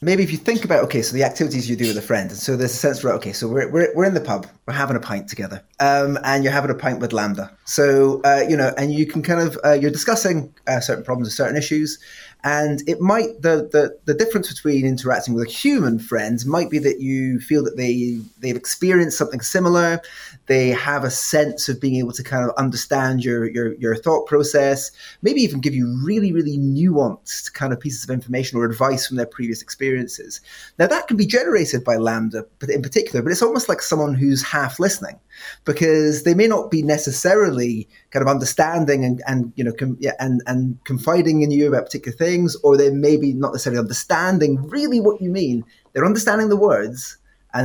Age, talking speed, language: 20-39, 220 wpm, English